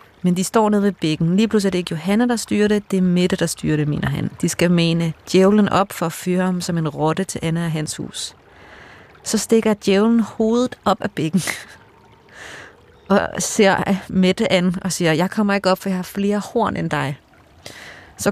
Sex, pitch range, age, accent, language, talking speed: female, 165-220 Hz, 30-49, native, Danish, 215 wpm